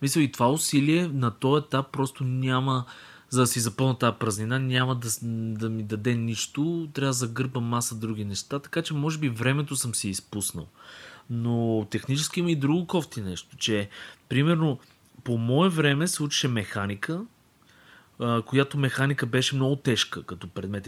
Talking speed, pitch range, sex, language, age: 165 wpm, 115-145 Hz, male, Bulgarian, 20-39